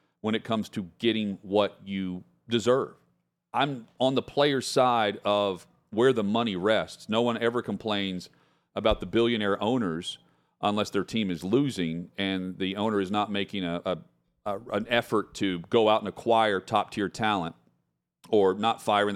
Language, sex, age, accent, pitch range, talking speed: English, male, 40-59, American, 95-125 Hz, 165 wpm